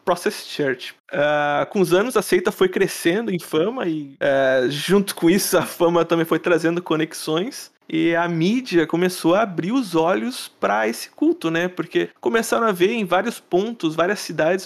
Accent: Brazilian